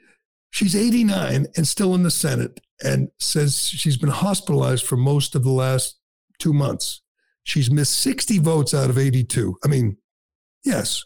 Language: English